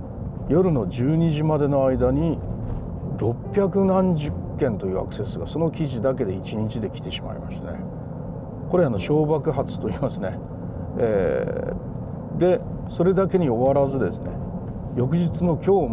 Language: Japanese